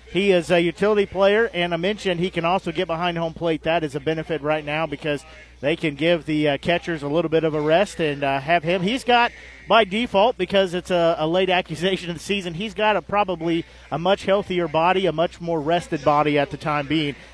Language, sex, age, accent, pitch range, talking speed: English, male, 40-59, American, 155-190 Hz, 235 wpm